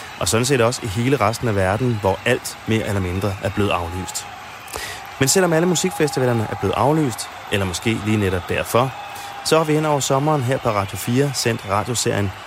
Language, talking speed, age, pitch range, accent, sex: Danish, 195 wpm, 30-49, 100-125 Hz, native, male